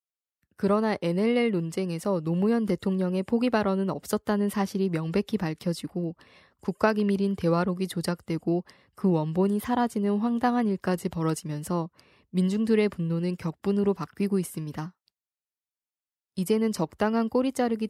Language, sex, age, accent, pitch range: Korean, female, 20-39, native, 175-220 Hz